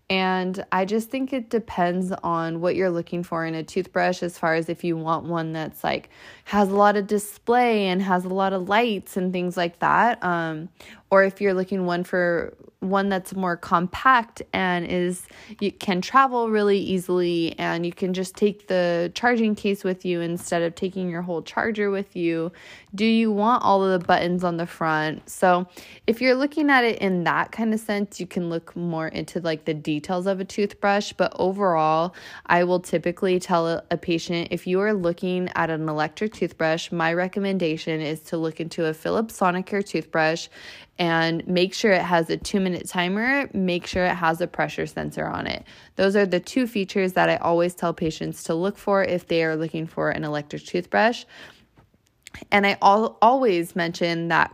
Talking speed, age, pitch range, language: 195 wpm, 20-39, 170-200 Hz, English